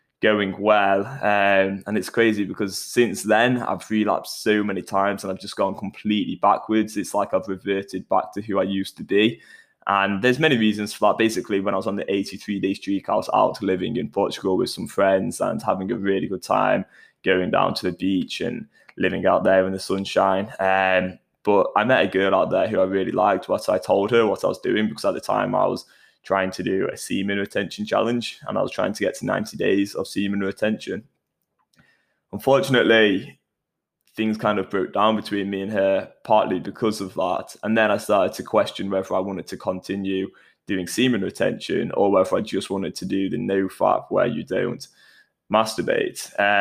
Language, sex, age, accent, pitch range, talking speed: English, male, 10-29, British, 95-105 Hz, 205 wpm